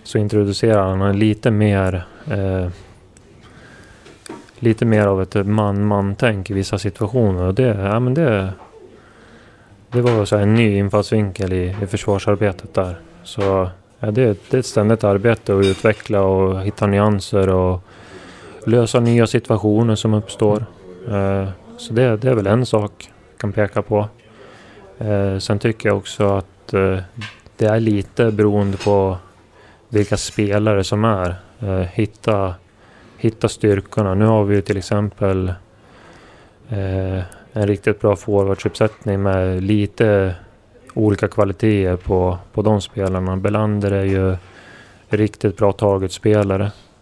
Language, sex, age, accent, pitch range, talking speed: Swedish, male, 20-39, native, 95-110 Hz, 135 wpm